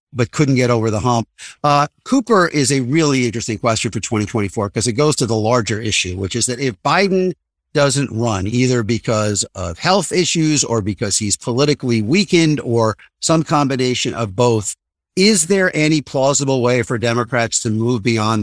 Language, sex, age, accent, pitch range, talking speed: English, male, 50-69, American, 115-145 Hz, 175 wpm